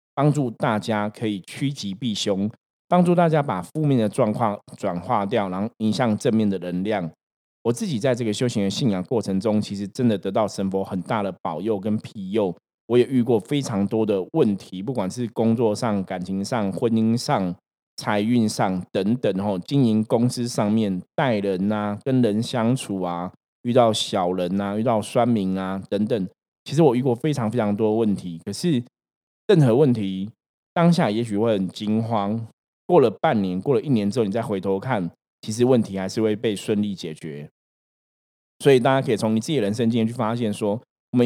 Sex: male